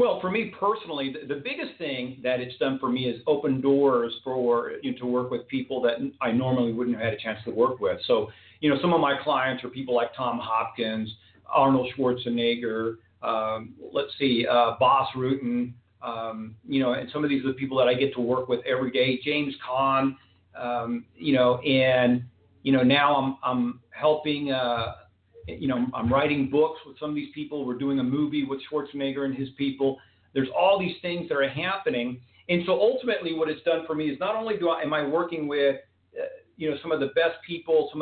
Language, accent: English, American